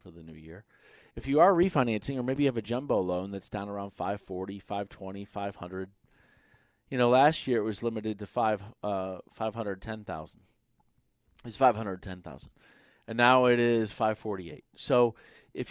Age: 40-59